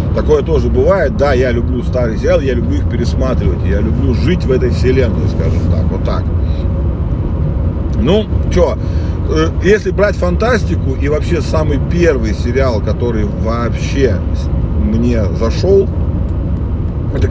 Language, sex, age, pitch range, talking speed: Russian, male, 40-59, 80-95 Hz, 130 wpm